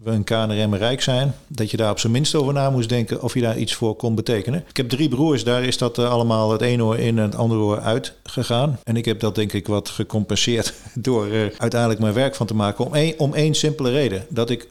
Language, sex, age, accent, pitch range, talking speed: Dutch, male, 50-69, Dutch, 105-120 Hz, 255 wpm